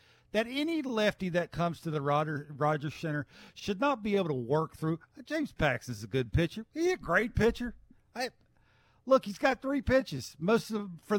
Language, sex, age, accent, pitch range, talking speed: English, male, 50-69, American, 145-205 Hz, 195 wpm